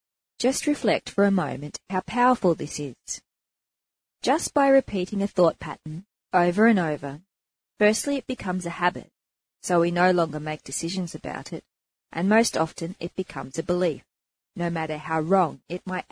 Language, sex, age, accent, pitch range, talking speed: English, female, 30-49, Australian, 155-200 Hz, 165 wpm